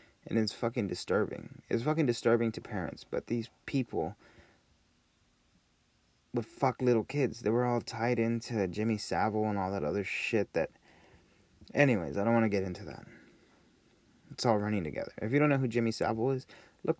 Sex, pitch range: male, 90-115 Hz